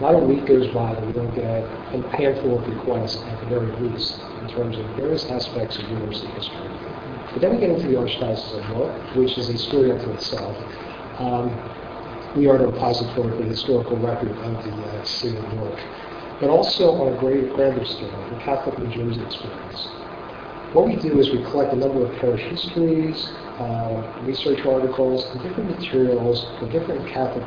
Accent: American